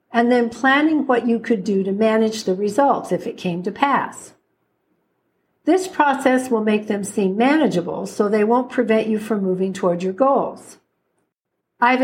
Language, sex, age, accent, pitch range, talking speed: English, female, 60-79, American, 195-250 Hz, 170 wpm